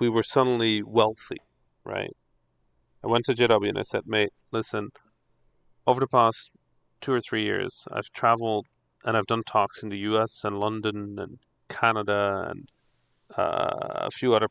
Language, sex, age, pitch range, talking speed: English, male, 40-59, 105-125 Hz, 160 wpm